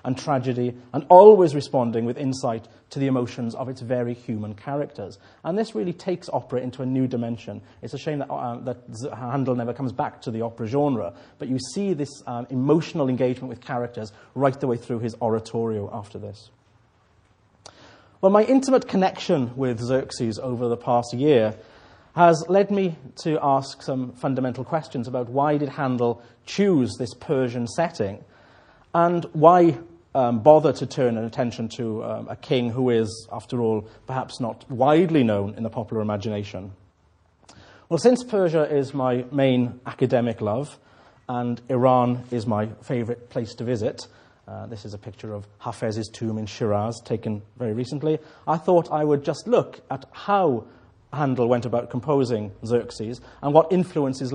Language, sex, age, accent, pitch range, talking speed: English, male, 40-59, British, 115-140 Hz, 165 wpm